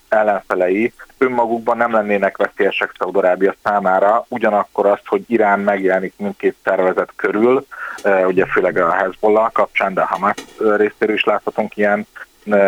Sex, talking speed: male, 130 wpm